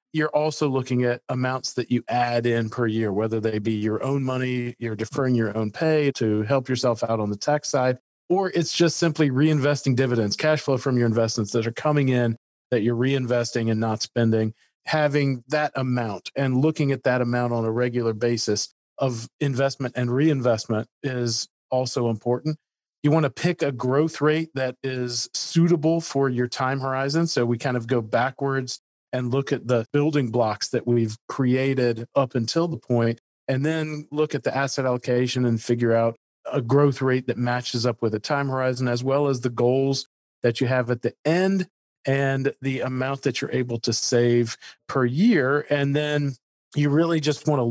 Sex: male